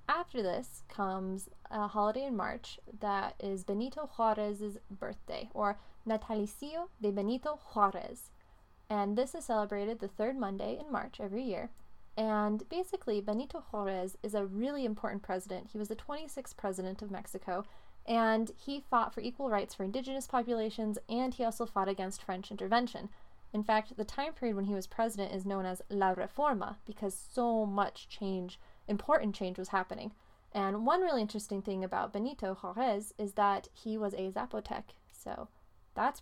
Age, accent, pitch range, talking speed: 20-39, American, 195-230 Hz, 160 wpm